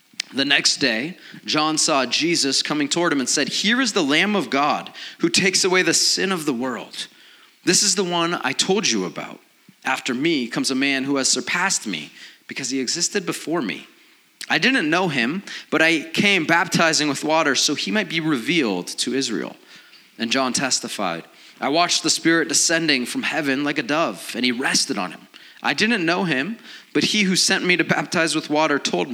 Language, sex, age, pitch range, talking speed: English, male, 30-49, 145-185 Hz, 200 wpm